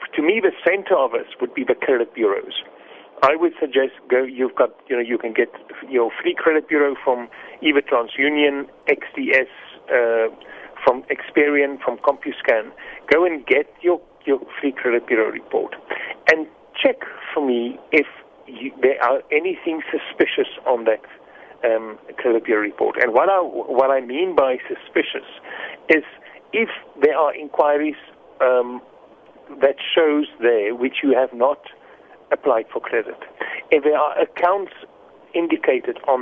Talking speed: 150 wpm